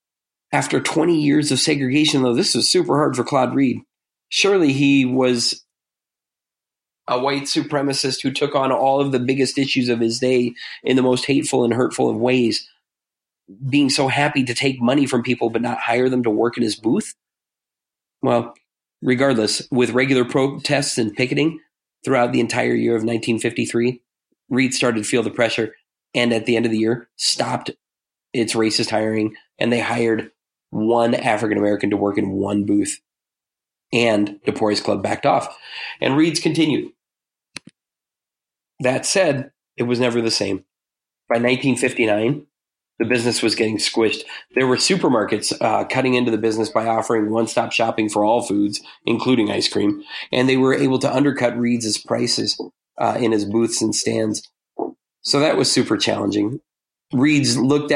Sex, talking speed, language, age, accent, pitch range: male, 165 wpm, English, 30-49, American, 110-135 Hz